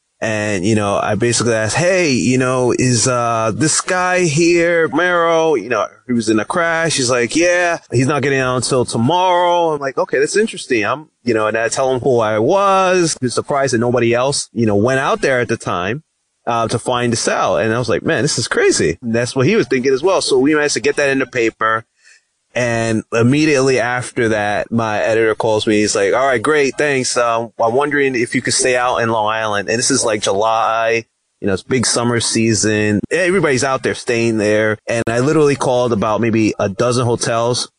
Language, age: English, 30-49